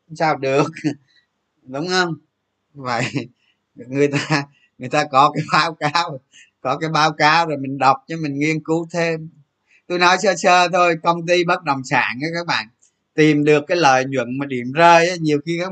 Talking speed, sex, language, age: 185 wpm, male, Vietnamese, 20-39